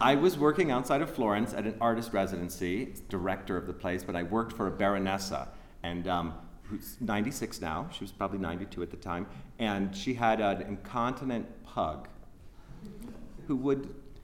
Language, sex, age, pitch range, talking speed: English, male, 40-59, 95-125 Hz, 170 wpm